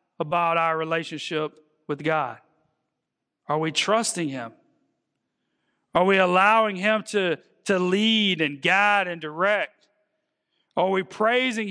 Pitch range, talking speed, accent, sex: 225-290 Hz, 120 wpm, American, male